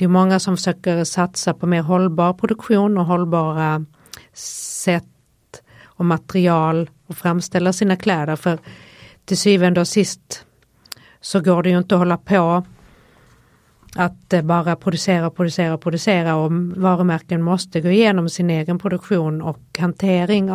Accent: native